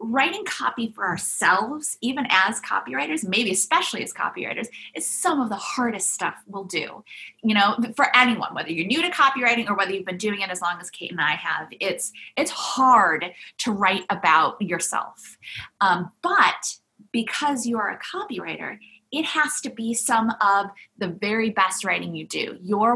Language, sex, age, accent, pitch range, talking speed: English, female, 20-39, American, 190-235 Hz, 180 wpm